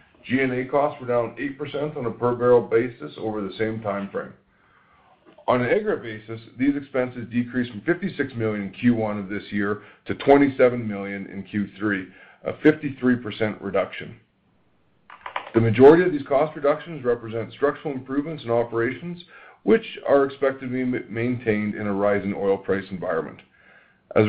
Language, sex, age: English, male, 40-59